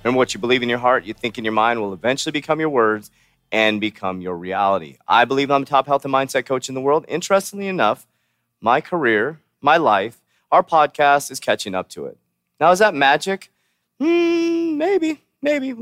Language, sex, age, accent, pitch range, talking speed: English, male, 30-49, American, 110-160 Hz, 200 wpm